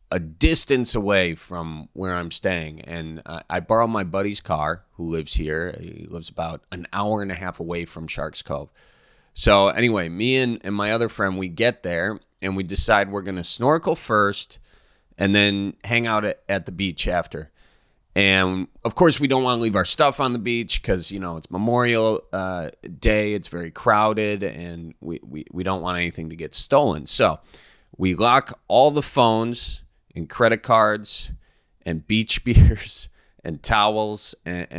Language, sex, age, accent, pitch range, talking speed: English, male, 30-49, American, 85-110 Hz, 180 wpm